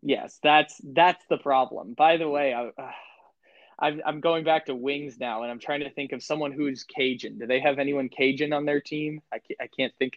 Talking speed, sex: 225 wpm, male